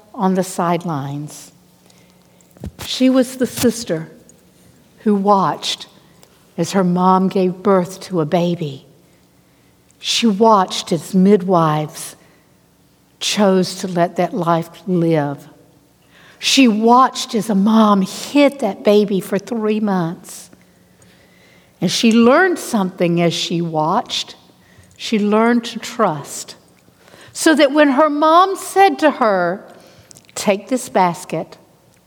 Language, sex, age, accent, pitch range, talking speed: English, female, 60-79, American, 165-240 Hz, 110 wpm